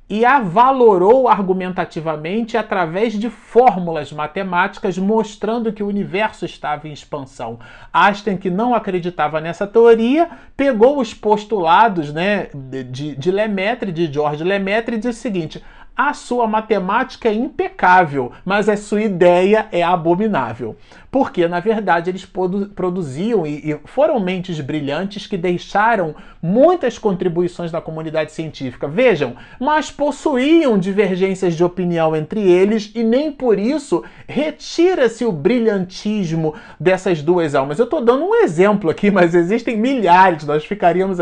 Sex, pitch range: male, 175-230 Hz